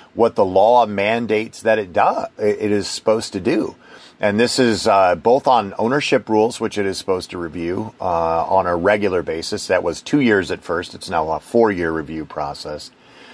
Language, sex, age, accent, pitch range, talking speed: English, male, 40-59, American, 95-115 Hz, 195 wpm